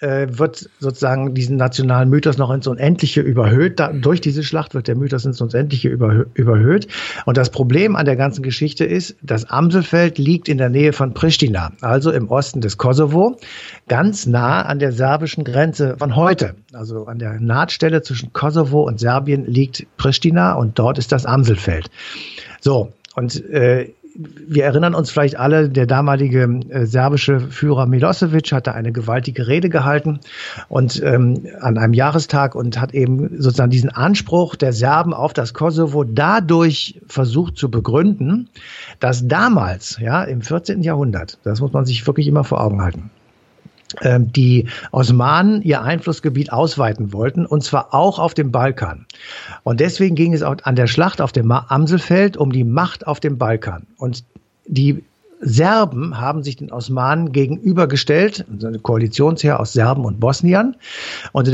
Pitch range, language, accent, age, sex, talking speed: 125-160 Hz, German, German, 60-79, male, 155 wpm